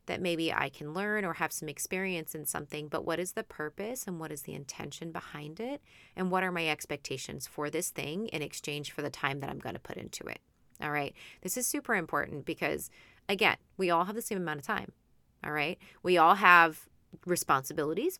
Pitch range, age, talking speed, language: 150-190 Hz, 30-49, 215 wpm, English